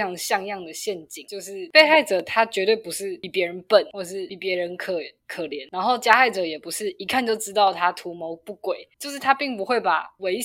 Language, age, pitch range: Chinese, 10-29, 180-225 Hz